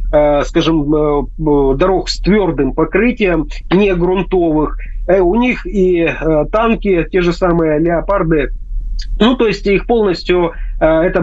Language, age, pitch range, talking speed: Russian, 30-49, 160-195 Hz, 110 wpm